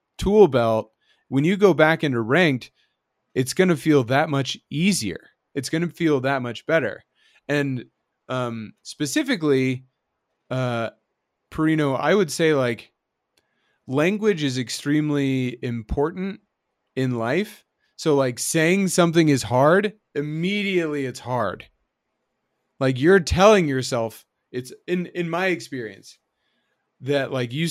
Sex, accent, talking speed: male, American, 125 wpm